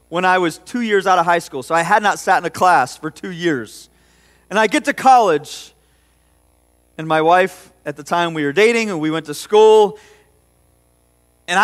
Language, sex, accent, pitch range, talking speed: English, male, American, 155-240 Hz, 205 wpm